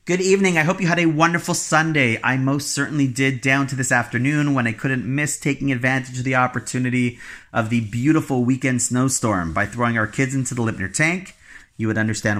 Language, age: English, 30-49